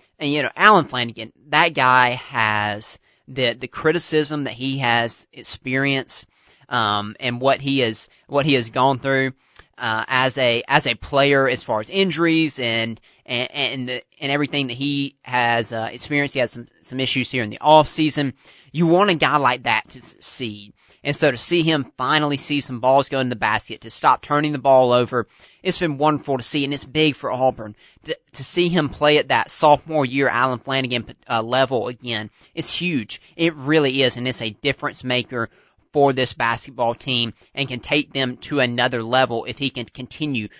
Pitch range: 120-150 Hz